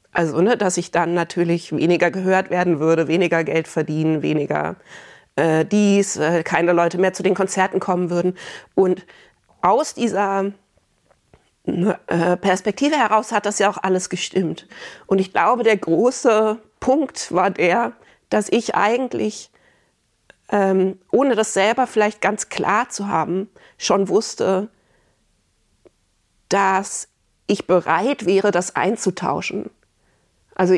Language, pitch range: German, 165-200 Hz